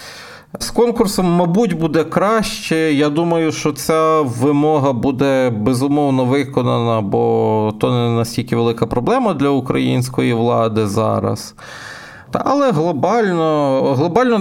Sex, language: male, Ukrainian